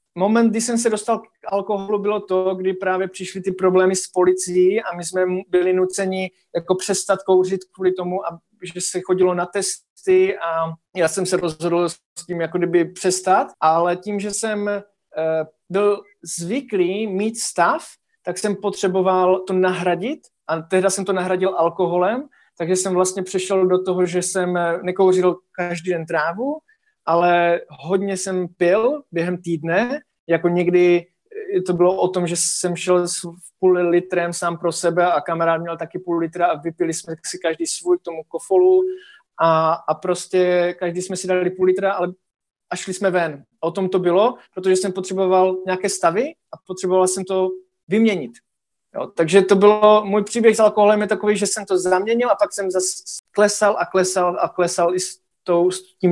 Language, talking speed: Slovak, 175 wpm